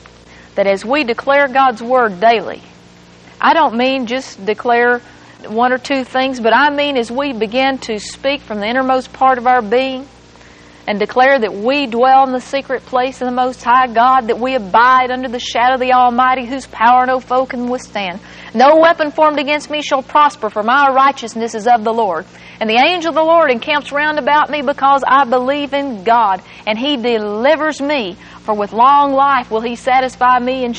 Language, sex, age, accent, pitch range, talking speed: English, female, 40-59, American, 230-290 Hz, 200 wpm